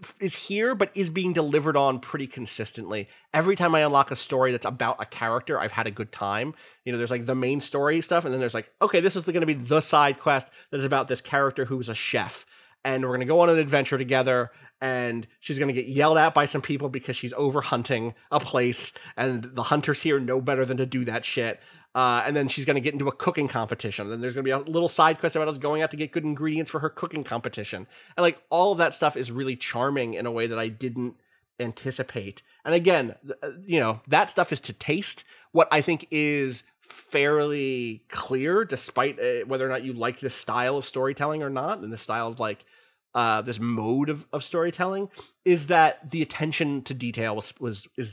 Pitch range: 125-155 Hz